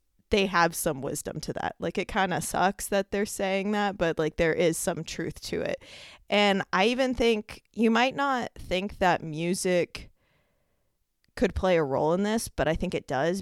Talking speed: 195 wpm